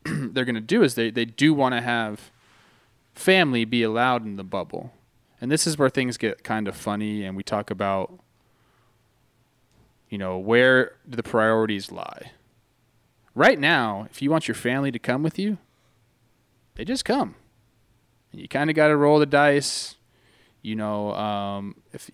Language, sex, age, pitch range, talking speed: English, male, 20-39, 110-130 Hz, 170 wpm